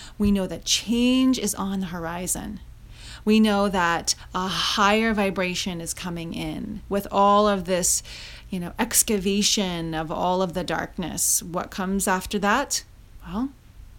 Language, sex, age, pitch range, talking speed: English, female, 30-49, 180-230 Hz, 145 wpm